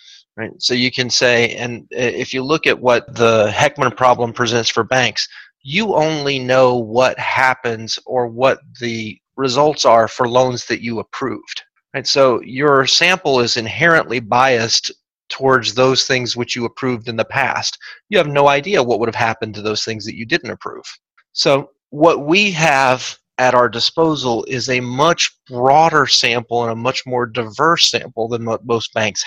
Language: English